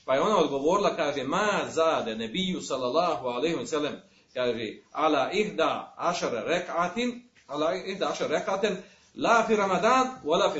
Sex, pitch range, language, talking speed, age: male, 140-185 Hz, Croatian, 145 wpm, 40-59